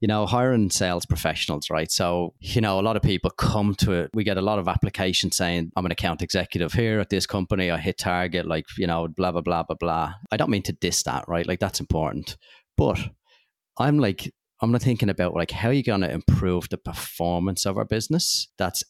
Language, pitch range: English, 85-105 Hz